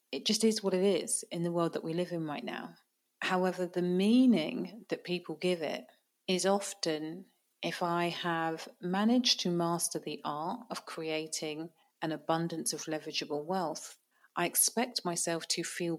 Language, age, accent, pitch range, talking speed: English, 30-49, British, 160-190 Hz, 165 wpm